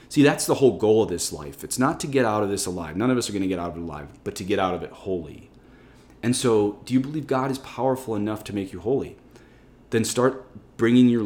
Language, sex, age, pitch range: English, male, 30-49, 95-130 Hz